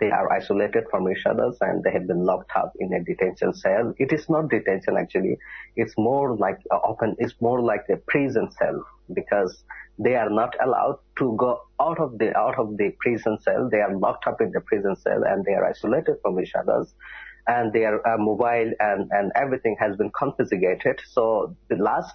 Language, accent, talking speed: English, Indian, 205 wpm